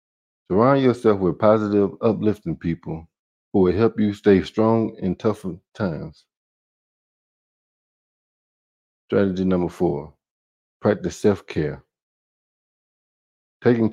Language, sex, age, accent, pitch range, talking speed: English, male, 50-69, American, 85-110 Hz, 90 wpm